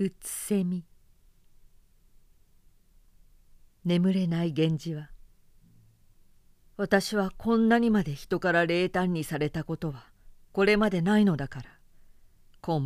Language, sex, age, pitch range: Japanese, female, 50-69, 130-185 Hz